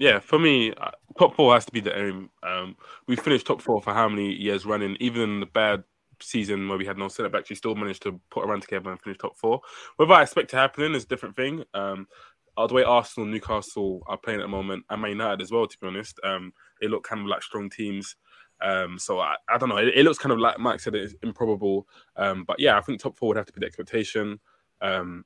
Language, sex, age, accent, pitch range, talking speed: English, male, 20-39, British, 95-115 Hz, 255 wpm